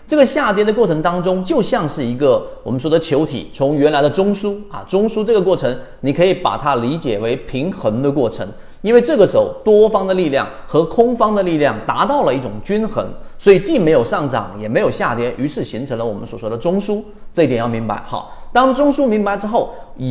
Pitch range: 135-215 Hz